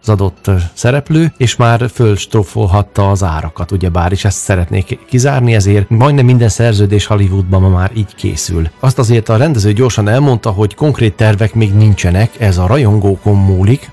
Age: 30-49